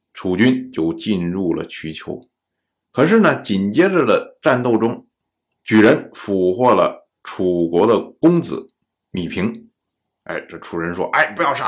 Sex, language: male, Chinese